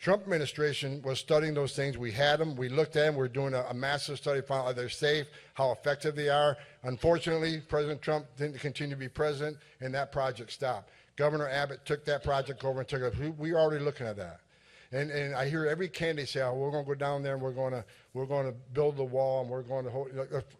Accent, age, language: American, 60-79, English